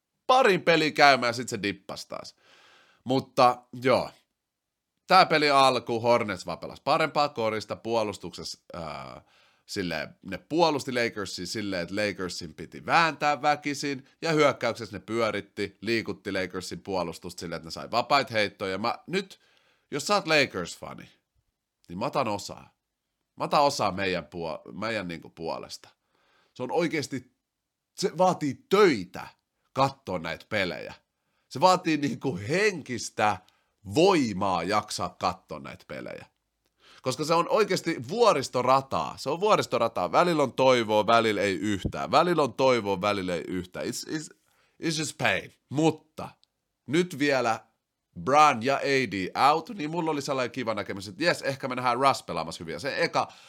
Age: 30-49